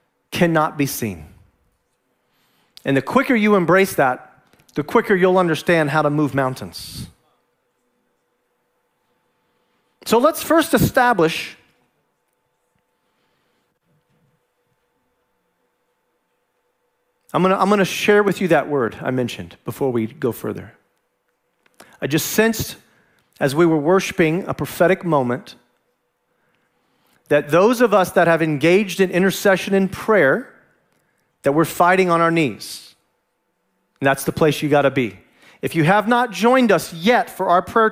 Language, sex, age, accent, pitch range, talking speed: English, male, 40-59, American, 150-215 Hz, 125 wpm